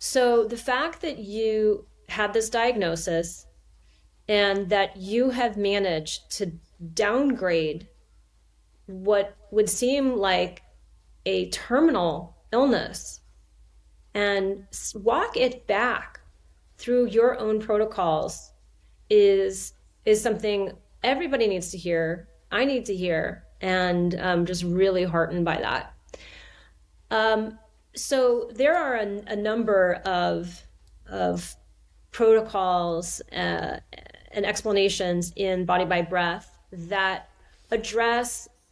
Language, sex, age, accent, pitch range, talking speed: English, female, 30-49, American, 170-220 Hz, 105 wpm